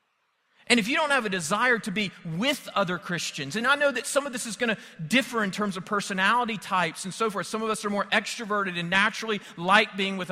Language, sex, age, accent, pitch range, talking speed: English, male, 40-59, American, 180-230 Hz, 245 wpm